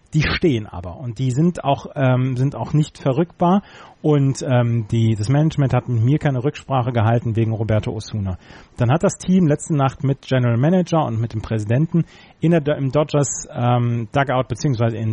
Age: 30-49